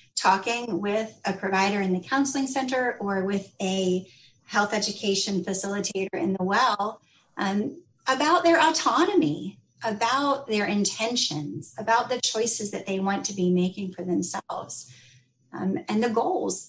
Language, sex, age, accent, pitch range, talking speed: English, female, 30-49, American, 190-230 Hz, 140 wpm